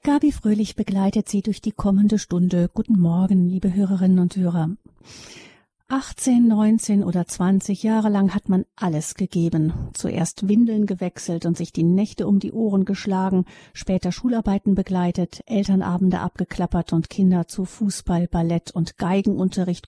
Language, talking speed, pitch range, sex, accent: German, 140 wpm, 185-220 Hz, female, German